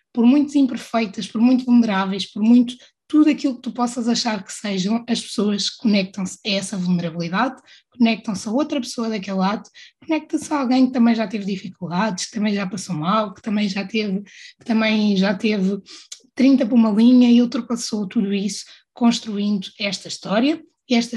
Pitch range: 195-245 Hz